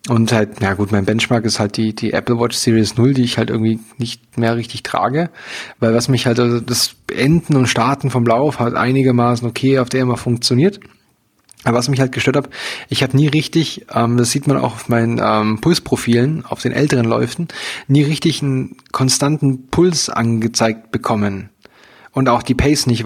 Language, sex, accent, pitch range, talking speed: German, male, German, 115-140 Hz, 200 wpm